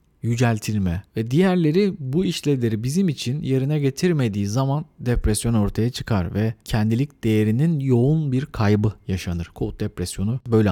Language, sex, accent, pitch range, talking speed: Turkish, male, native, 105-155 Hz, 130 wpm